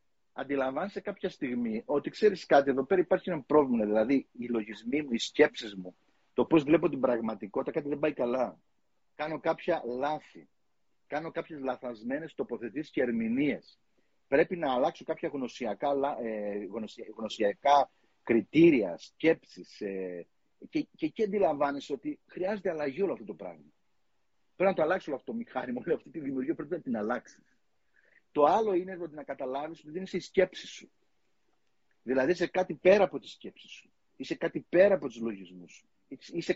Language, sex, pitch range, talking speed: Greek, male, 130-180 Hz, 160 wpm